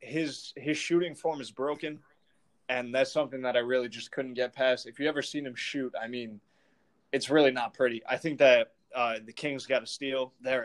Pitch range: 120-140 Hz